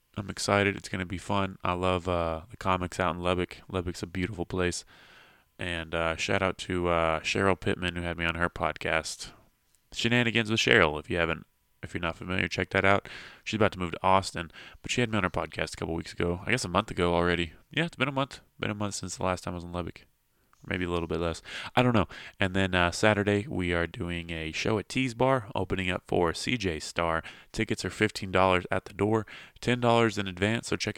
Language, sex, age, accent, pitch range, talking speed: English, male, 20-39, American, 85-100 Hz, 235 wpm